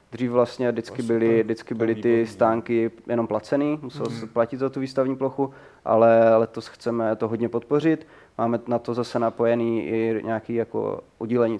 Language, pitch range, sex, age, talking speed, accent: Czech, 115-125 Hz, male, 20-39, 165 wpm, native